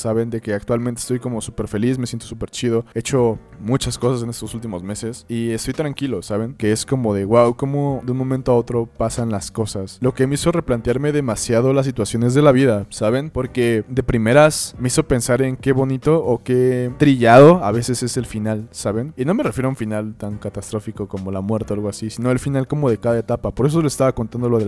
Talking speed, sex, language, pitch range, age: 235 wpm, male, Spanish, 110-125 Hz, 20-39